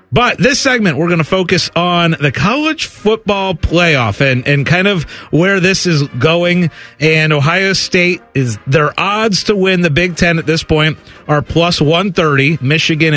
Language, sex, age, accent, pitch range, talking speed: English, male, 40-59, American, 130-175 Hz, 175 wpm